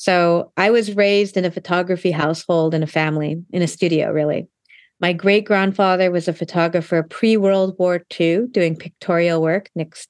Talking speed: 160 wpm